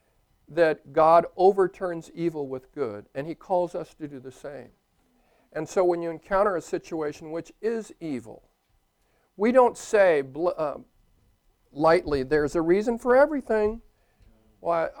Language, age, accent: English, 50-69, American